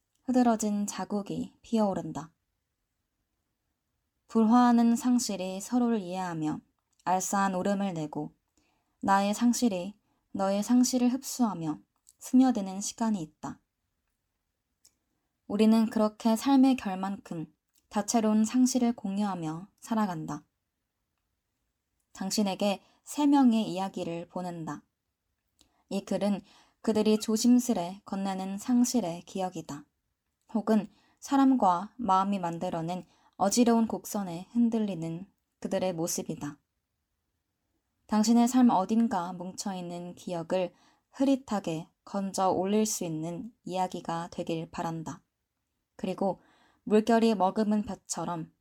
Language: Korean